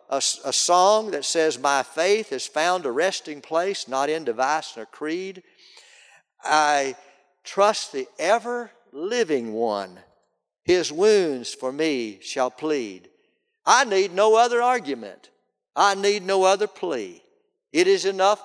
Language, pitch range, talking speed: English, 150-250 Hz, 135 wpm